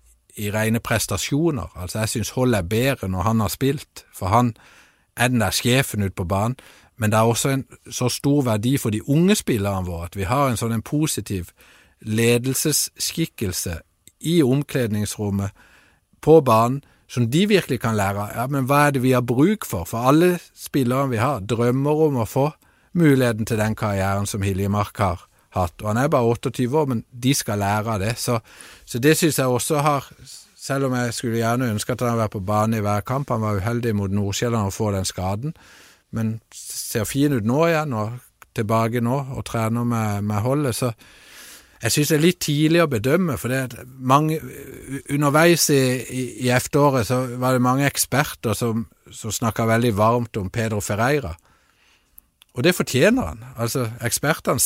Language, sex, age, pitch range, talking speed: Danish, male, 50-69, 110-135 Hz, 180 wpm